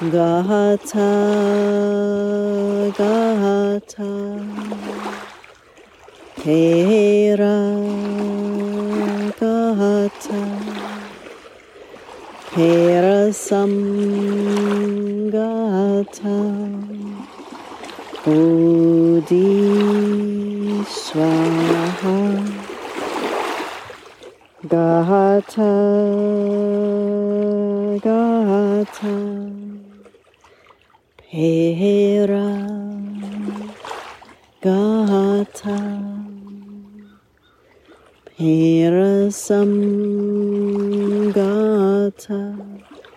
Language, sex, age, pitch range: English, female, 40-59, 200-205 Hz